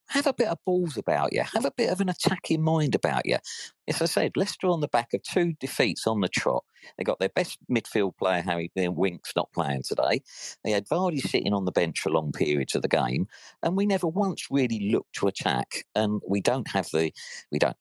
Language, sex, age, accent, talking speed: English, male, 50-69, British, 225 wpm